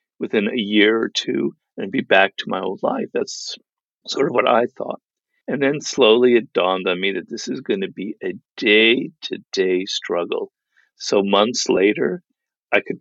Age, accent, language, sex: 50-69, American, English, male